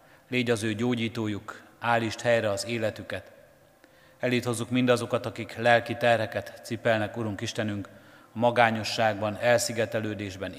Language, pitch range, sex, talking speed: Hungarian, 105-120 Hz, male, 115 wpm